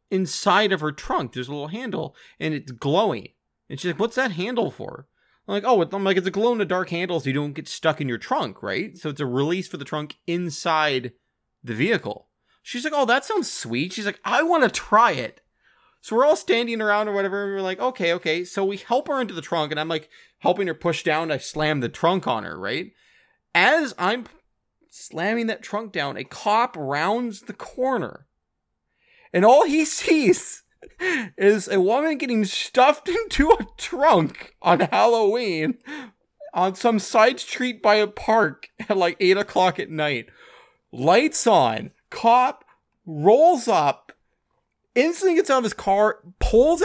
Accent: American